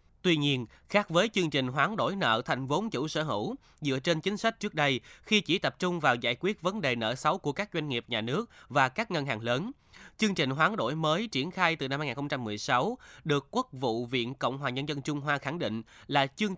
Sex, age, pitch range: male, 20-39, 125-180 Hz